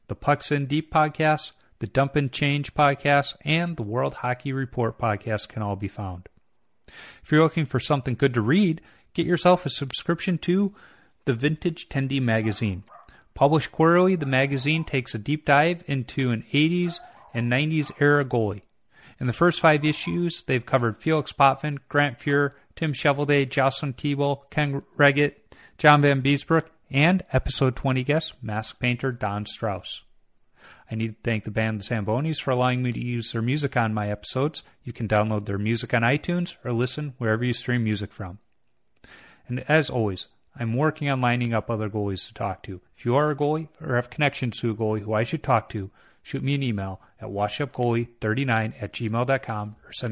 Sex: male